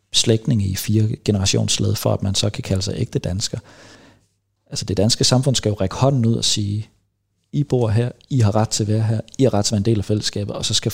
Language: Danish